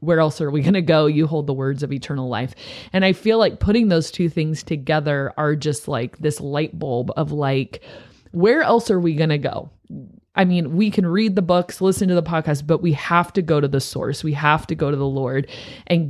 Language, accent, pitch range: English, American, 145-170 Hz